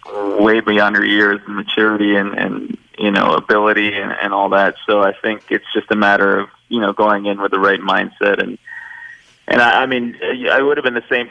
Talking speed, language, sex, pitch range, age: 225 wpm, English, male, 100-110 Hz, 20-39